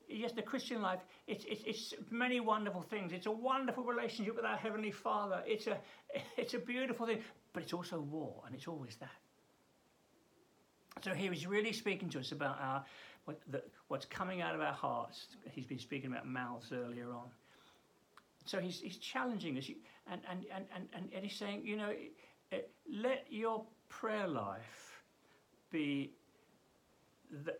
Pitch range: 145-210 Hz